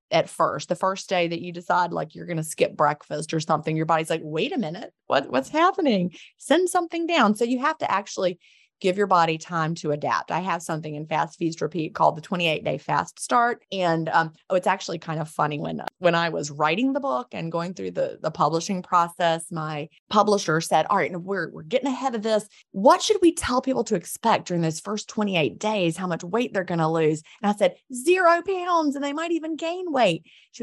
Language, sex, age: English, female, 20-39